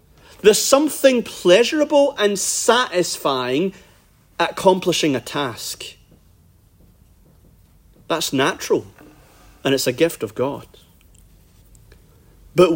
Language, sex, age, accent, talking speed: English, male, 40-59, British, 85 wpm